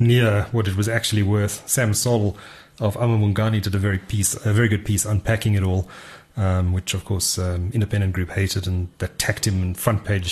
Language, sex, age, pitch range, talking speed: English, male, 30-49, 90-110 Hz, 205 wpm